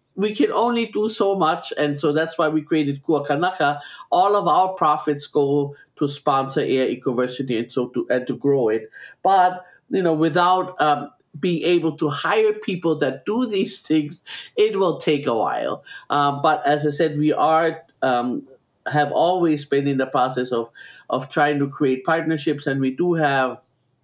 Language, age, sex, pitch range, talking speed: English, 50-69, male, 135-165 Hz, 180 wpm